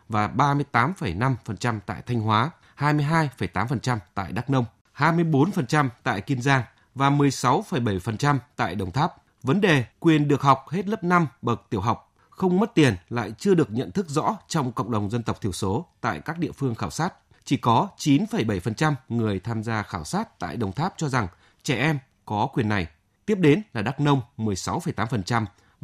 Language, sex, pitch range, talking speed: Vietnamese, male, 110-160 Hz, 175 wpm